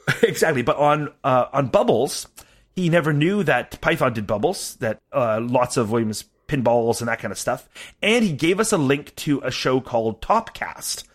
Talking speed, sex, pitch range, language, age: 190 wpm, male, 115-150 Hz, English, 30-49